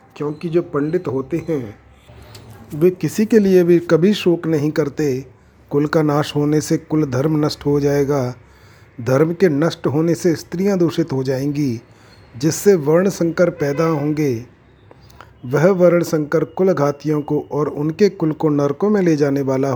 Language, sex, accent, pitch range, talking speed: Hindi, male, native, 135-175 Hz, 160 wpm